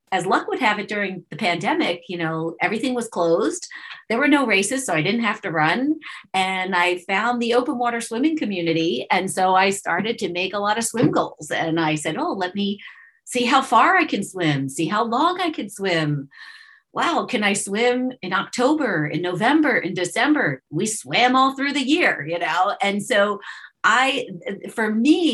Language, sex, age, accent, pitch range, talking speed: English, female, 40-59, American, 175-245 Hz, 195 wpm